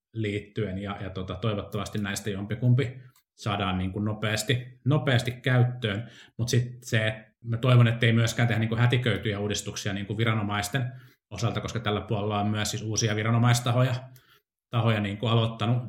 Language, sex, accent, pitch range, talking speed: Finnish, male, native, 105-120 Hz, 145 wpm